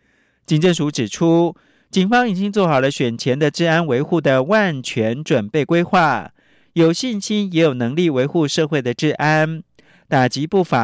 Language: Chinese